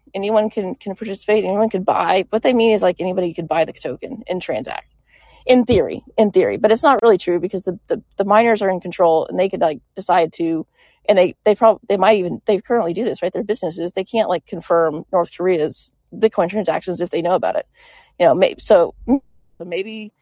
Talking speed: 220 wpm